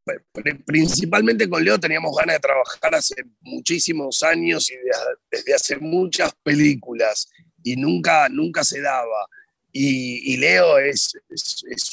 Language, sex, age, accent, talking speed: Spanish, male, 40-59, Argentinian, 130 wpm